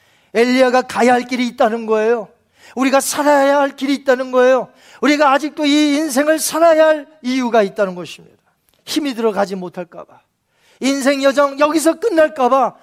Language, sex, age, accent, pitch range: Korean, male, 40-59, native, 205-270 Hz